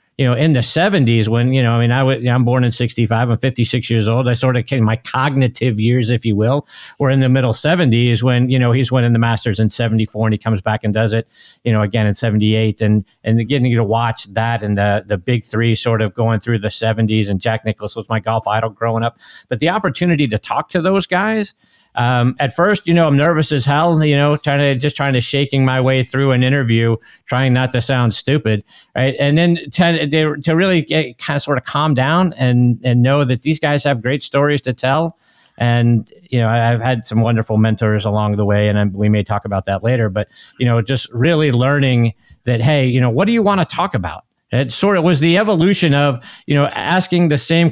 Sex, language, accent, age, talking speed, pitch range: male, English, American, 50-69, 240 wpm, 115-145 Hz